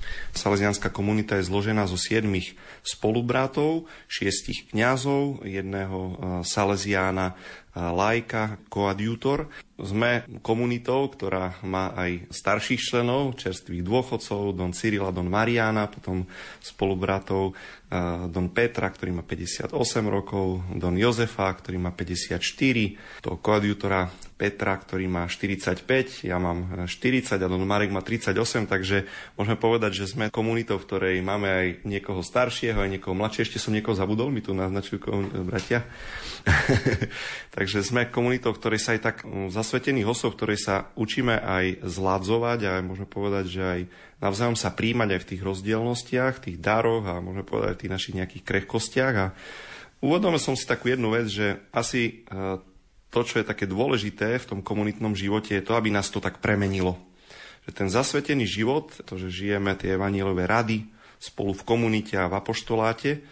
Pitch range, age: 95-115 Hz, 30-49